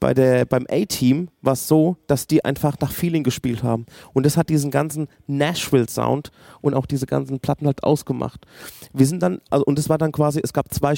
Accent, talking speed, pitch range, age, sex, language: German, 220 wpm, 130-155 Hz, 30-49, male, German